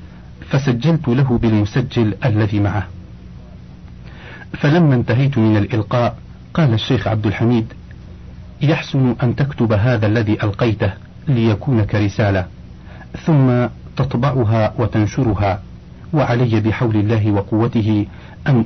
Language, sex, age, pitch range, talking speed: Arabic, male, 50-69, 105-125 Hz, 95 wpm